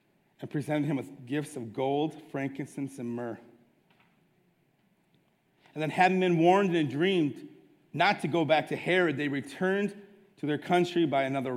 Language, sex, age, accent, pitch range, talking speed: English, male, 40-59, American, 125-150 Hz, 155 wpm